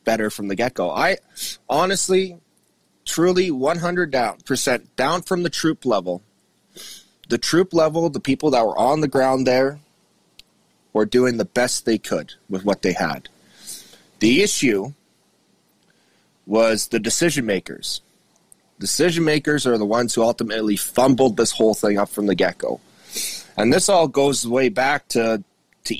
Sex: male